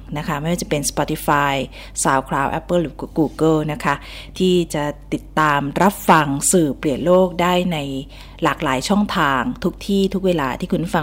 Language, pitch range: Thai, 150-185 Hz